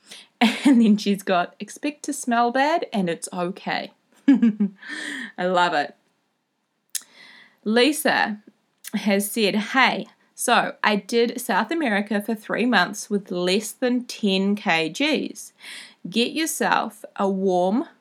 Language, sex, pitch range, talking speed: English, female, 195-240 Hz, 115 wpm